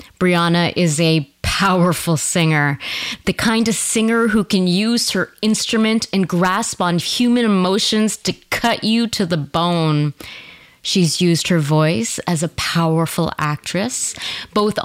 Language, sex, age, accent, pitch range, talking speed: English, female, 30-49, American, 180-225 Hz, 135 wpm